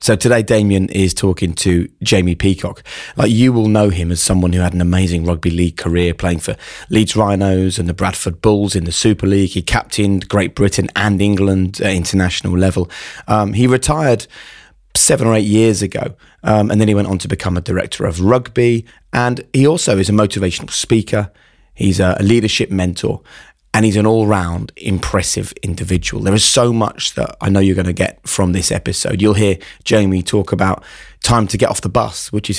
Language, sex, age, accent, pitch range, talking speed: English, male, 20-39, British, 90-110 Hz, 200 wpm